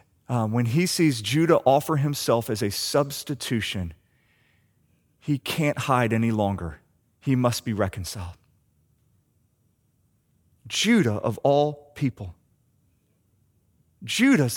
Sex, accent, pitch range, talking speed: male, American, 110-160 Hz, 100 wpm